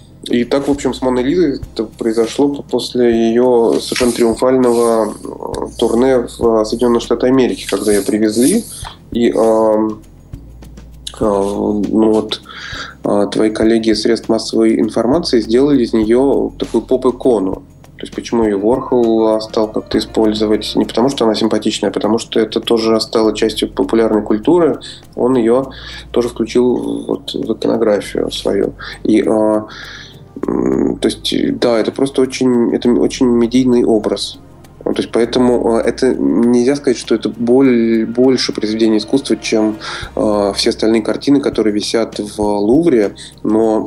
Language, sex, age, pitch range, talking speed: Russian, male, 20-39, 110-125 Hz, 140 wpm